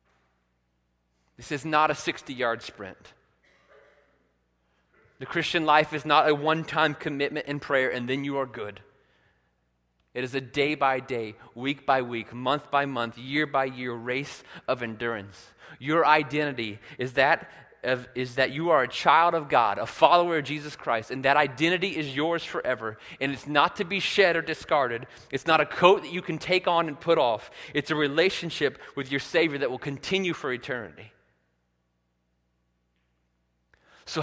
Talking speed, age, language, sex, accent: 150 wpm, 30-49, English, male, American